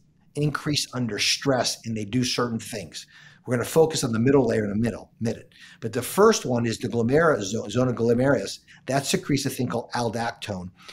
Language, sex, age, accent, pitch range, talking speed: English, male, 50-69, American, 115-150 Hz, 190 wpm